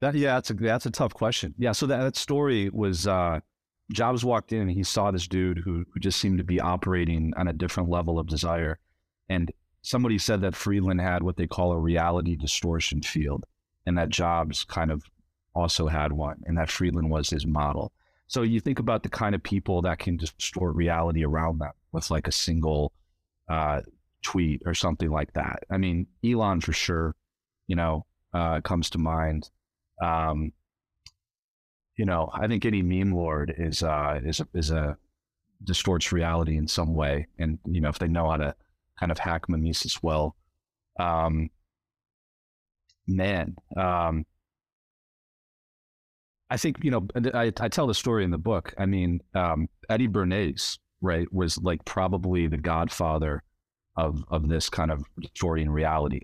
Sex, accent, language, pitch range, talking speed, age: male, American, English, 80-95 Hz, 175 wpm, 30-49